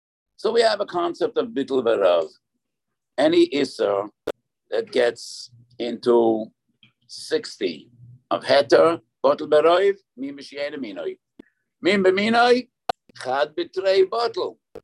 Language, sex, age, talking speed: English, male, 60-79, 100 wpm